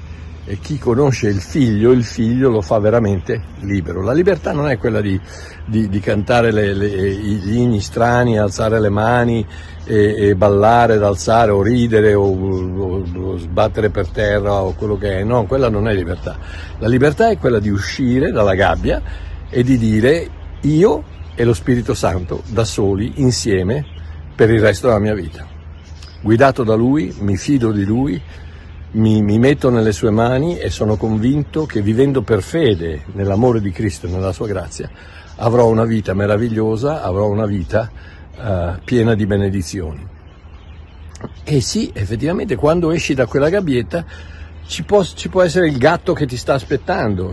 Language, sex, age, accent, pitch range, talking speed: Italian, male, 60-79, native, 95-125 Hz, 160 wpm